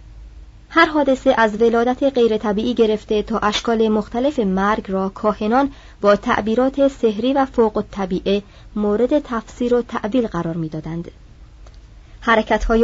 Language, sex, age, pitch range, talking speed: Persian, male, 30-49, 195-245 Hz, 115 wpm